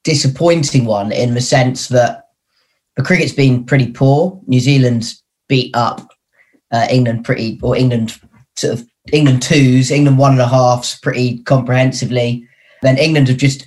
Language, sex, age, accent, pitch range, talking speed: English, male, 20-39, British, 120-135 Hz, 155 wpm